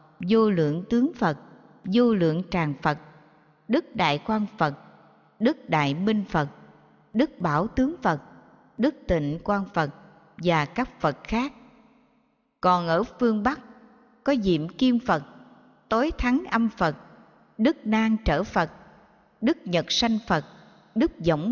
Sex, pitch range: female, 165-245 Hz